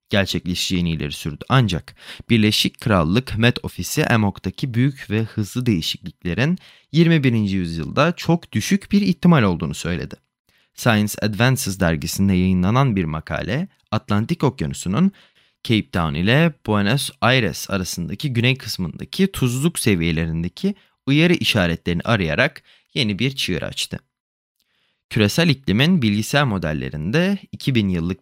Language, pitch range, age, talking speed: Turkish, 95-140 Hz, 30-49, 110 wpm